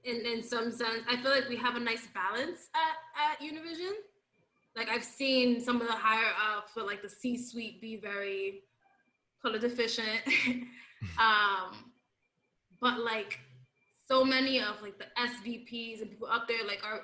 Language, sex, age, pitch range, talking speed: English, female, 10-29, 215-255 Hz, 160 wpm